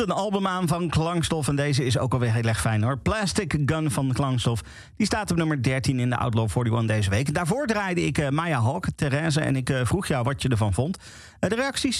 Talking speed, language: 240 wpm, Dutch